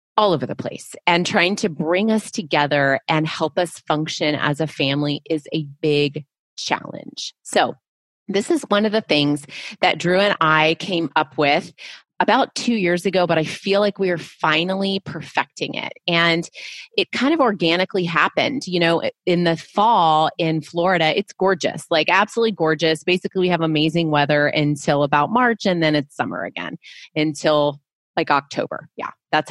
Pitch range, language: 155-200 Hz, English